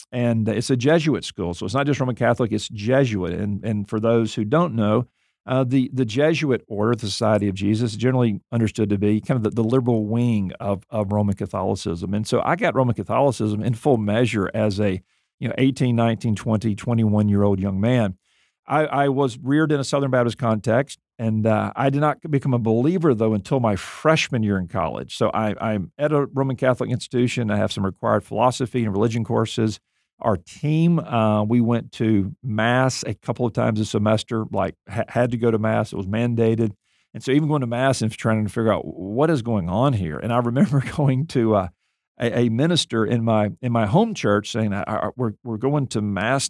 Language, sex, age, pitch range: English, male, 50-69, 105-130 Hz